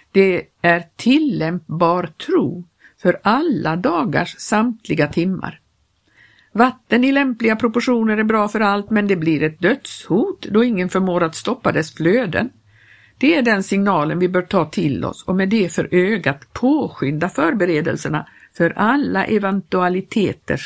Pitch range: 170-230 Hz